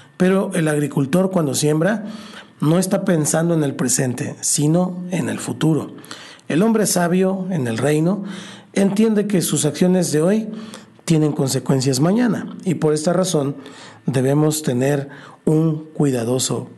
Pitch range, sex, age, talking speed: 145-180 Hz, male, 50-69, 135 wpm